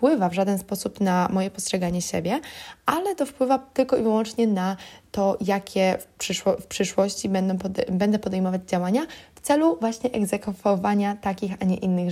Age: 20-39